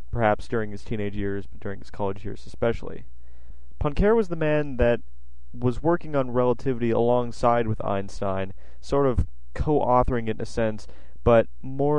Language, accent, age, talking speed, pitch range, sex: English, American, 20-39, 160 wpm, 95-125 Hz, male